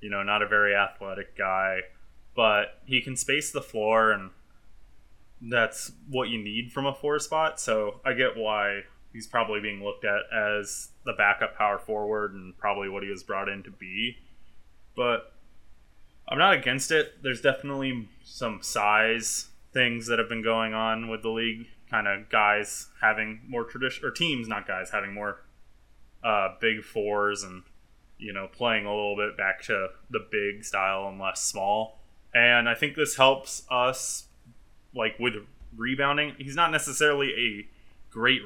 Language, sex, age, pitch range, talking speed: English, male, 20-39, 105-135 Hz, 165 wpm